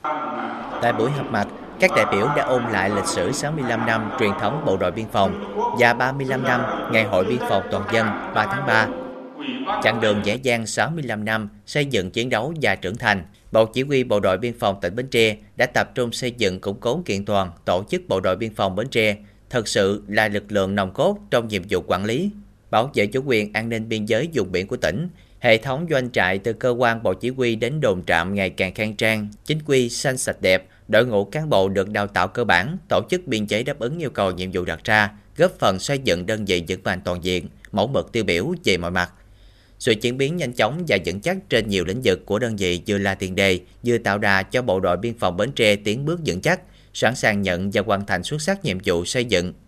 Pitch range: 95-125 Hz